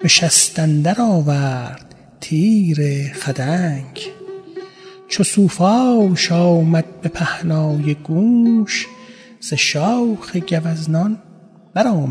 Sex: male